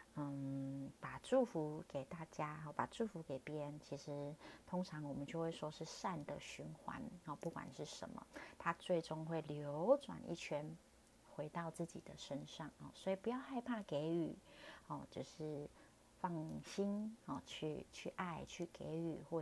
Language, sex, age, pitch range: Chinese, female, 30-49, 145-175 Hz